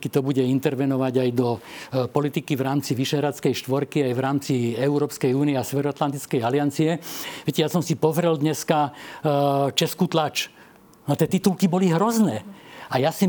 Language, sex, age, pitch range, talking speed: Slovak, male, 50-69, 140-170 Hz, 165 wpm